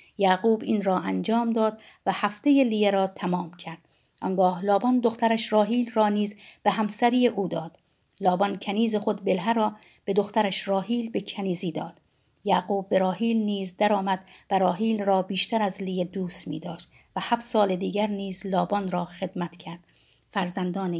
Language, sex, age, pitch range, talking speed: Persian, female, 50-69, 185-230 Hz, 160 wpm